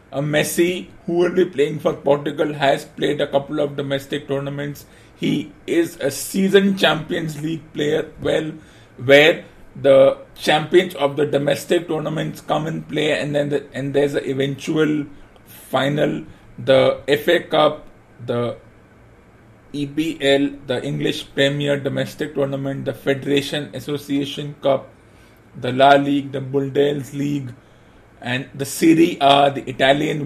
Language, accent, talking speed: English, Indian, 130 wpm